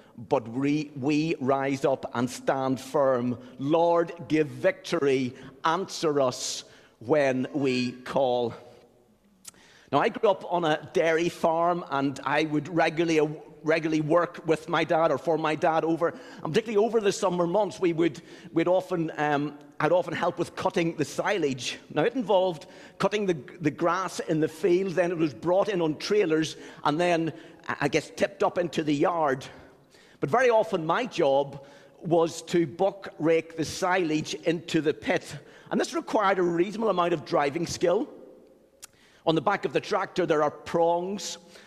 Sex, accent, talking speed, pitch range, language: male, British, 165 wpm, 155-185 Hz, English